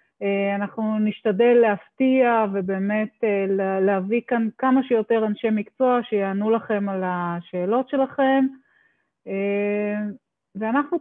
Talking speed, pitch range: 85 wpm, 200-245 Hz